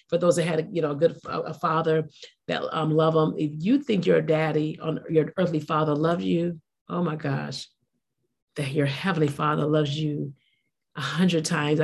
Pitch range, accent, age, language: 150-170 Hz, American, 40-59, English